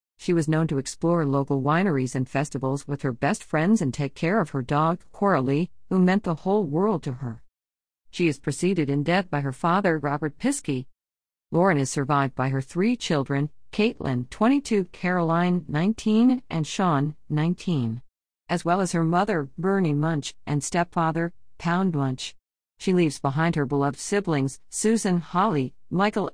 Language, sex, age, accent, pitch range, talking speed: English, female, 50-69, American, 140-185 Hz, 160 wpm